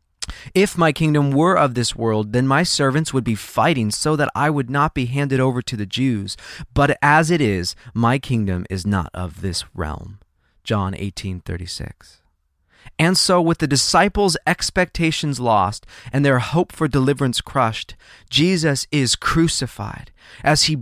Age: 30-49